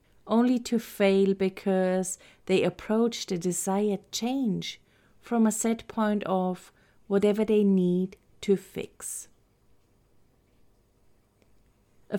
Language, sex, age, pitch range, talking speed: English, female, 30-49, 185-230 Hz, 100 wpm